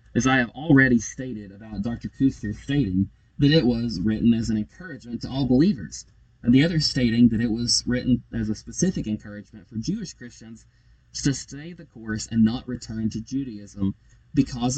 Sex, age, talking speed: male, 20-39, 180 wpm